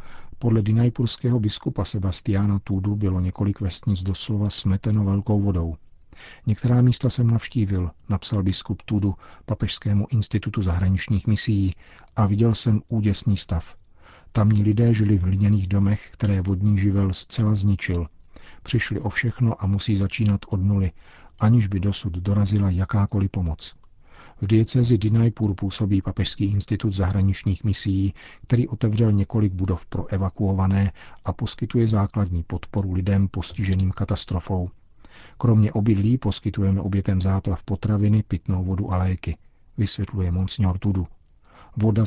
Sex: male